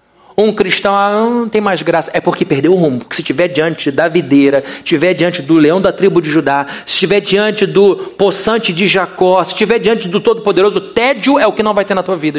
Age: 40-59